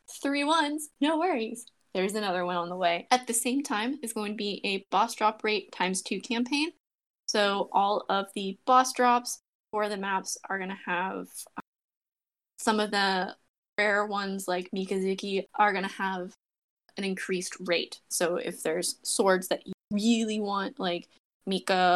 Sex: female